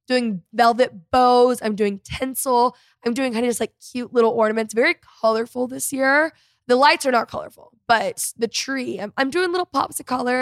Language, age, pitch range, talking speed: English, 10-29, 220-265 Hz, 195 wpm